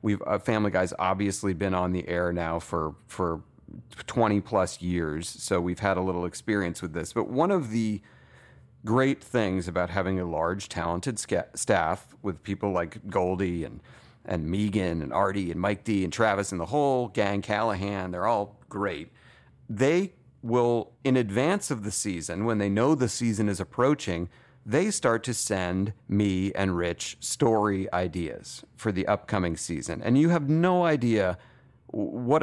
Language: English